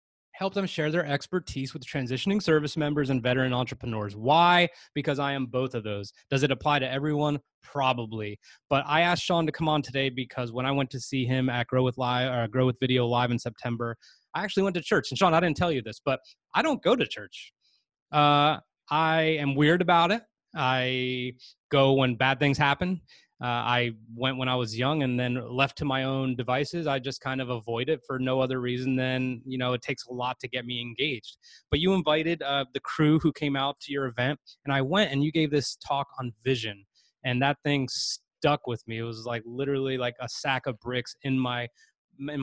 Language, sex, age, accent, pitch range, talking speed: English, male, 20-39, American, 125-145 Hz, 220 wpm